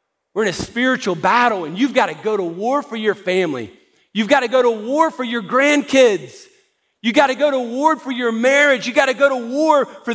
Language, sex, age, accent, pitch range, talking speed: English, male, 40-59, American, 190-255 Hz, 215 wpm